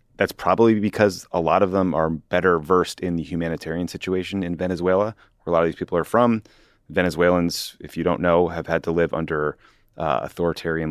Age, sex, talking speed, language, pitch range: 30-49, male, 200 wpm, English, 80-100 Hz